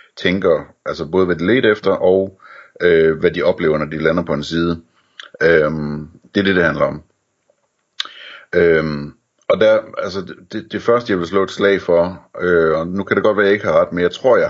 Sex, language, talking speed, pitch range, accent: male, Danish, 225 wpm, 80-95 Hz, native